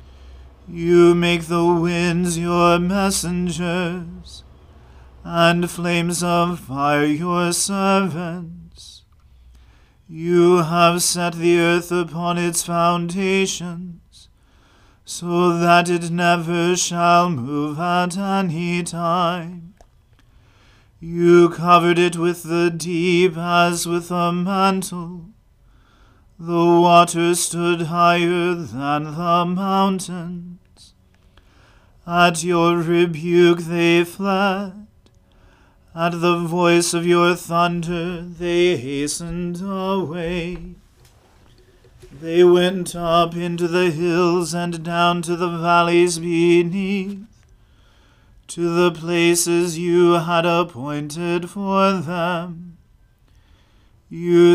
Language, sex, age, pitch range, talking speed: English, male, 40-59, 165-175 Hz, 90 wpm